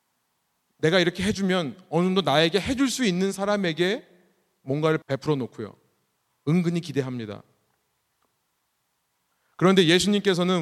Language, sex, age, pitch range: Korean, male, 40-59, 125-175 Hz